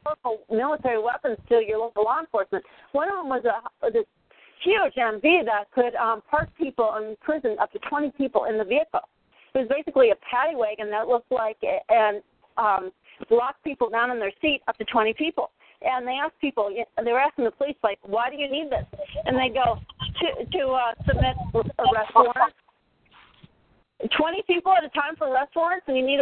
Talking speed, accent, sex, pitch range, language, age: 195 wpm, American, female, 230-295 Hz, English, 40-59